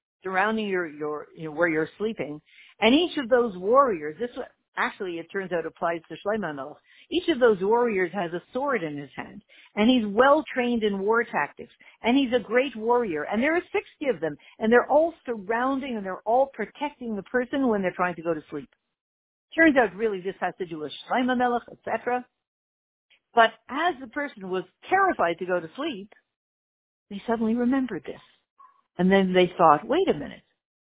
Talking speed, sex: 185 wpm, female